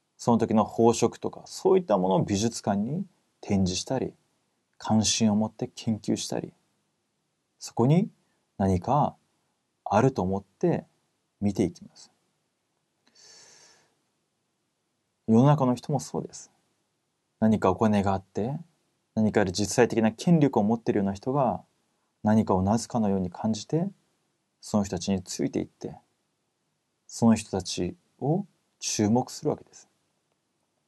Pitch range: 105-145 Hz